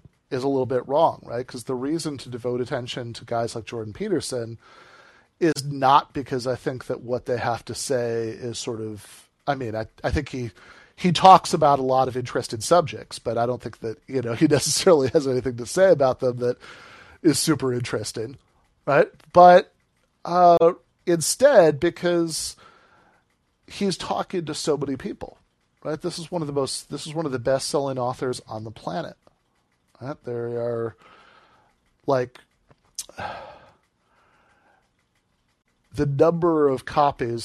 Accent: American